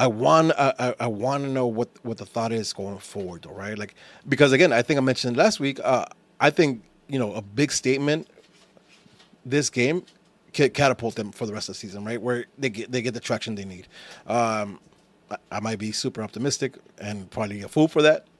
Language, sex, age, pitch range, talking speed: English, male, 30-49, 110-140 Hz, 210 wpm